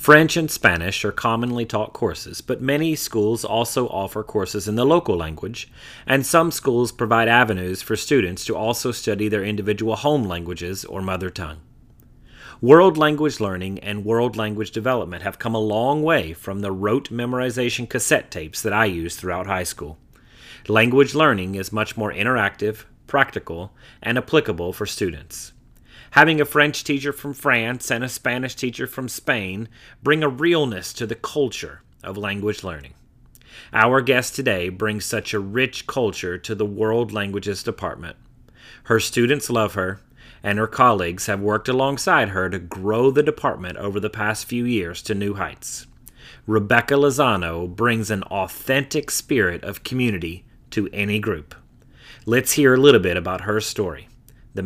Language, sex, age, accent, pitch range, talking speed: English, male, 30-49, American, 95-125 Hz, 160 wpm